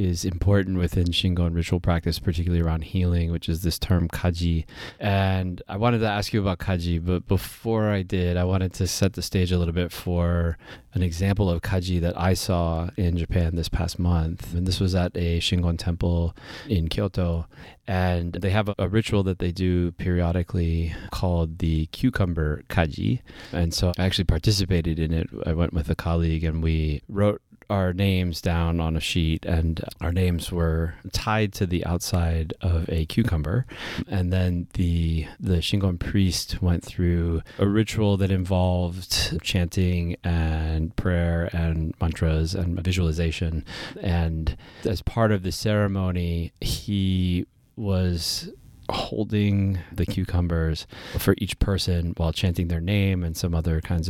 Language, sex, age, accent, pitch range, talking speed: English, male, 30-49, American, 85-95 Hz, 160 wpm